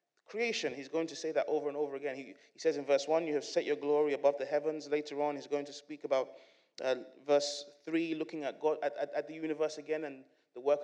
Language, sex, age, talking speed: English, male, 30-49, 255 wpm